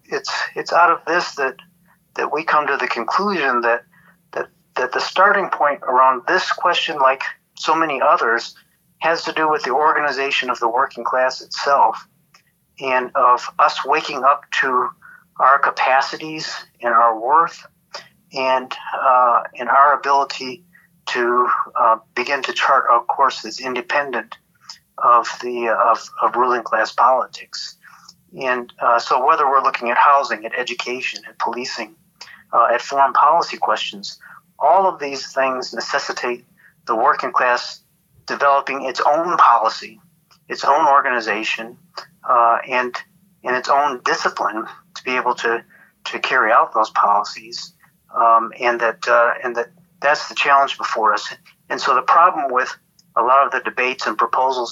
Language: English